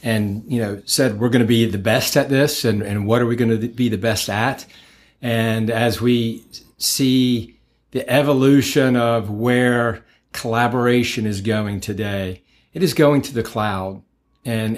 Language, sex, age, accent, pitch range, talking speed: English, male, 50-69, American, 110-130 Hz, 170 wpm